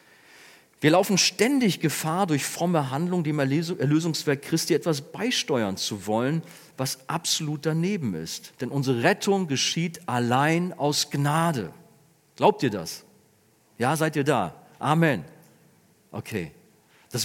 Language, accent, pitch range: German, German, 135-180 Hz